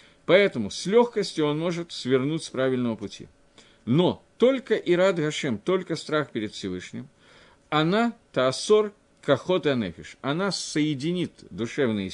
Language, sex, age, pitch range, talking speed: Russian, male, 50-69, 125-180 Hz, 110 wpm